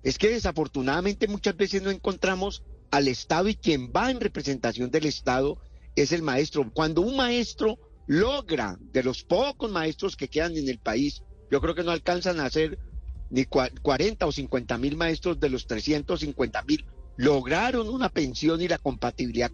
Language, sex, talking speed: Spanish, male, 170 wpm